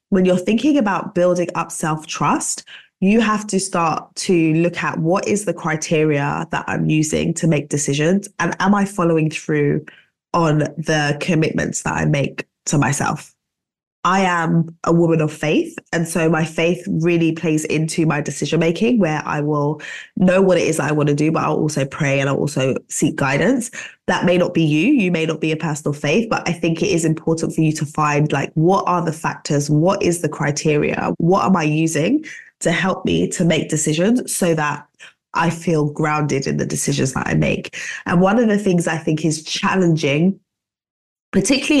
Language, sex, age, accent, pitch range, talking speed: English, female, 20-39, British, 155-190 Hz, 190 wpm